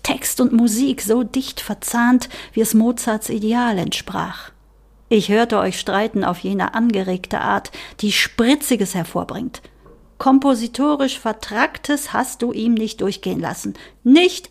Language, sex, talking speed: German, female, 130 wpm